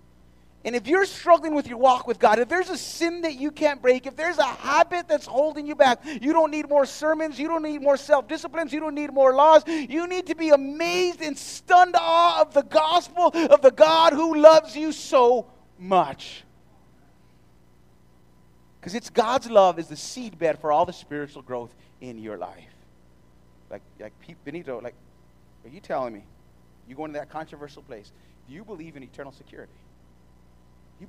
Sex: male